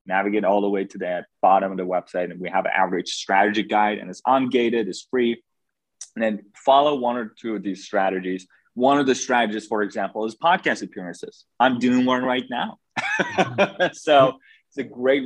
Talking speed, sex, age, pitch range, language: 195 wpm, male, 20-39, 95-115 Hz, English